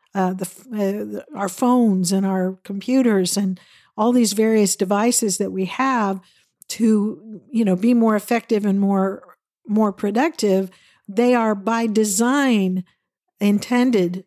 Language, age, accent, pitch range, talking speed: English, 50-69, American, 195-235 Hz, 130 wpm